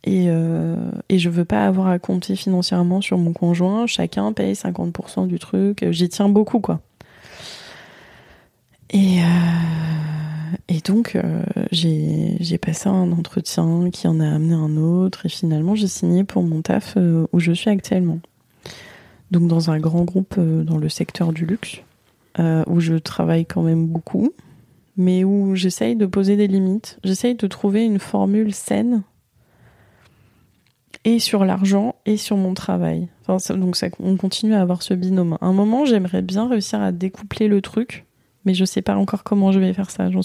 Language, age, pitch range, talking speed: French, 20-39, 170-200 Hz, 180 wpm